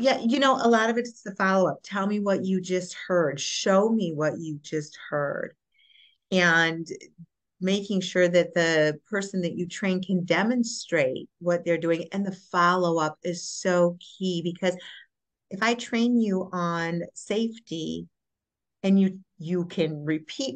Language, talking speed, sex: English, 155 wpm, female